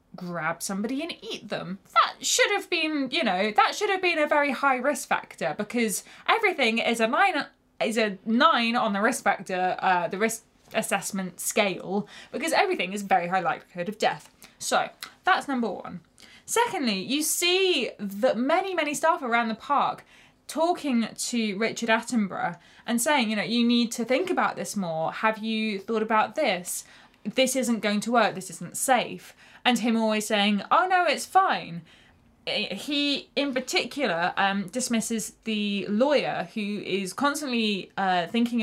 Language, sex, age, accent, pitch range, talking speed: English, female, 20-39, British, 195-280 Hz, 165 wpm